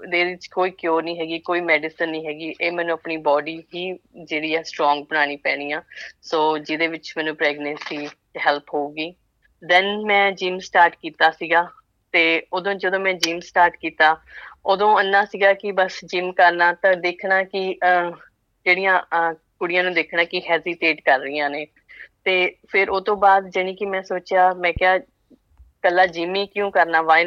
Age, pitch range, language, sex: 20-39, 160-185 Hz, Punjabi, female